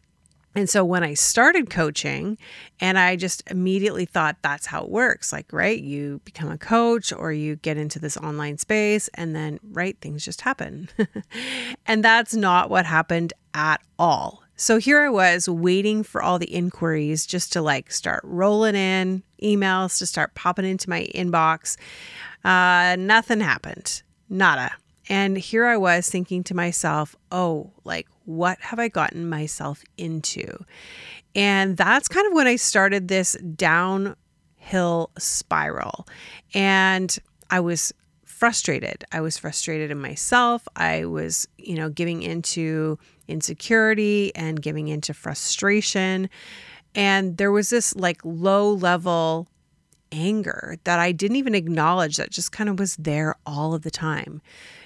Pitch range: 160-200 Hz